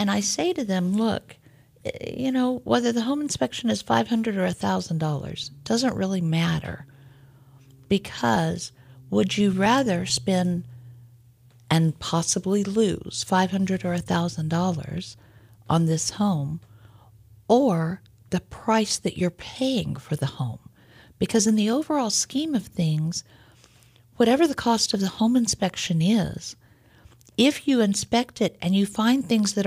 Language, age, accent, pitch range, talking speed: English, 50-69, American, 135-190 Hz, 135 wpm